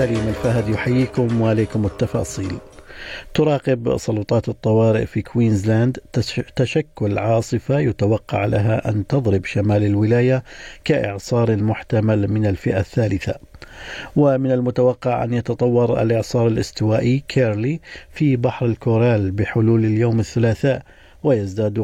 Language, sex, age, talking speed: Arabic, male, 50-69, 100 wpm